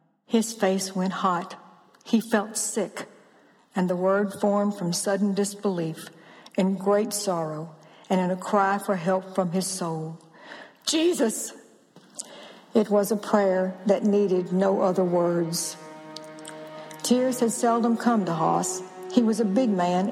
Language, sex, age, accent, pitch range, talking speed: English, female, 60-79, American, 180-205 Hz, 140 wpm